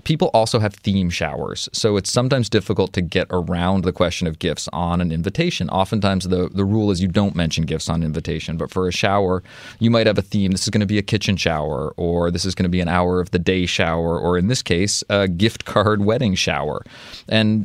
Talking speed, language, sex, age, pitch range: 235 wpm, English, male, 20-39, 90-110 Hz